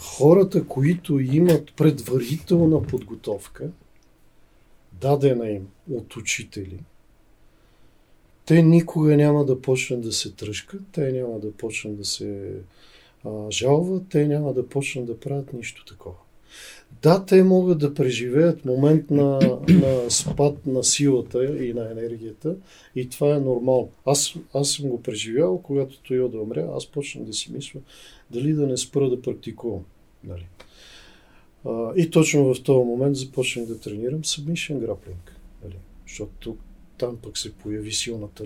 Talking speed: 140 wpm